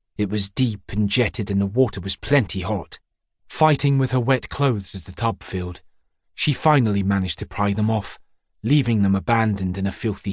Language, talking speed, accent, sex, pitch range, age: English, 190 wpm, British, male, 95-125 Hz, 30-49